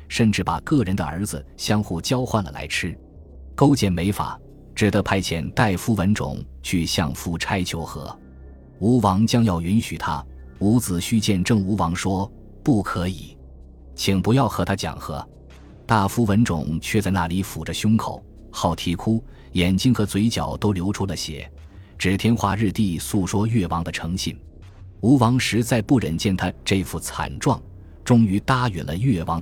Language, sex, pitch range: Chinese, male, 80-110 Hz